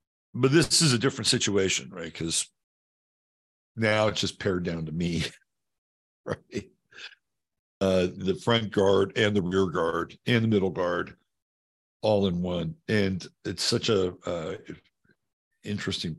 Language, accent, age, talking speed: English, American, 60-79, 135 wpm